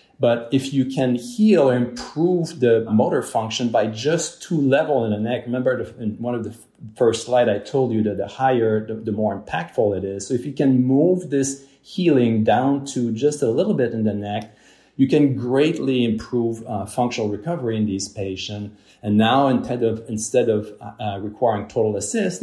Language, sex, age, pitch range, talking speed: English, male, 40-59, 105-130 Hz, 190 wpm